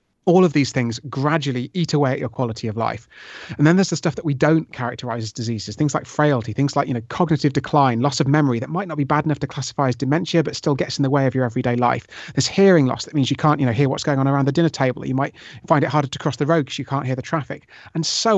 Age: 30-49